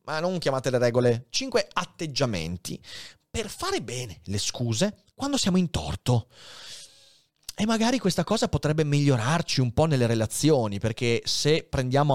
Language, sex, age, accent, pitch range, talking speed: Italian, male, 30-49, native, 120-185 Hz, 145 wpm